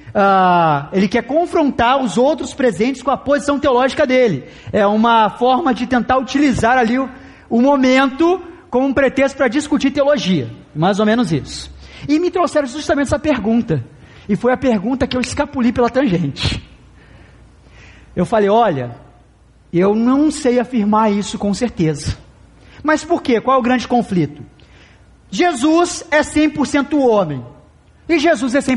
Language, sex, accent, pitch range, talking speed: Portuguese, male, Brazilian, 200-275 Hz, 150 wpm